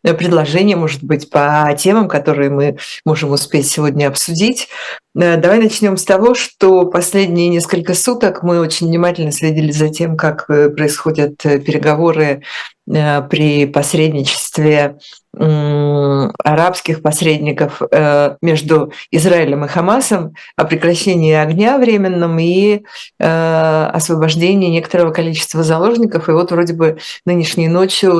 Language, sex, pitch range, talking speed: Russian, female, 150-175 Hz, 110 wpm